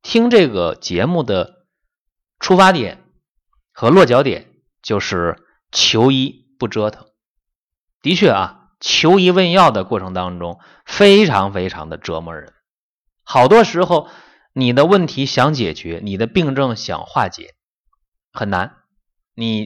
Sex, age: male, 30-49